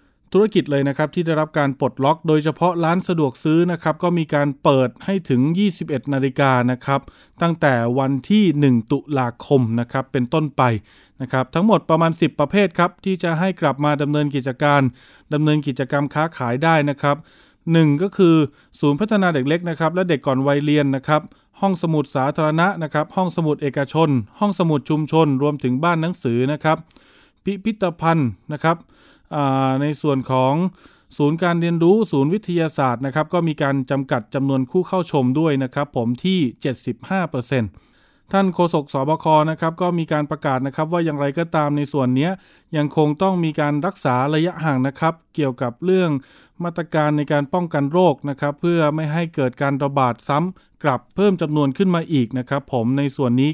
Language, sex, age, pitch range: Thai, male, 20-39, 135-165 Hz